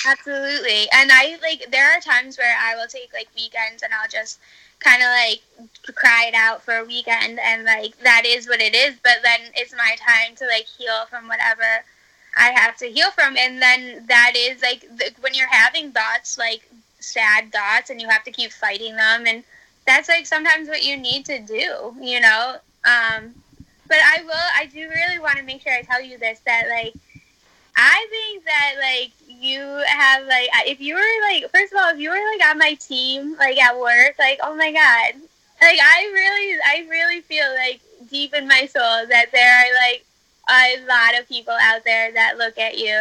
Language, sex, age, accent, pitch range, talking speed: English, female, 10-29, American, 230-290 Hz, 205 wpm